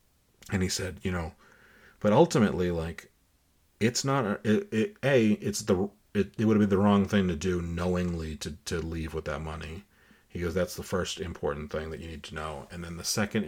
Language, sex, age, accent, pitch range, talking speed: English, male, 40-59, American, 85-105 Hz, 205 wpm